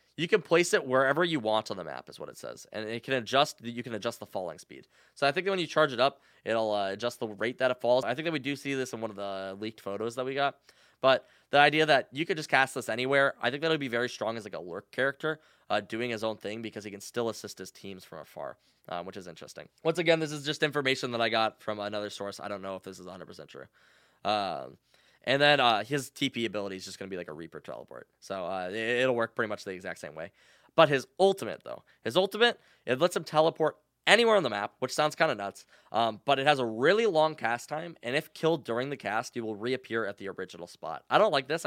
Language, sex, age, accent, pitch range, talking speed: English, male, 20-39, American, 105-150 Hz, 270 wpm